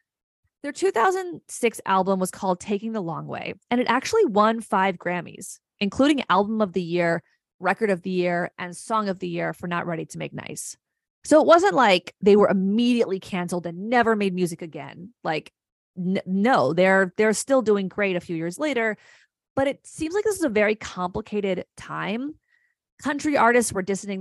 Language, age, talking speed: English, 20-39, 180 wpm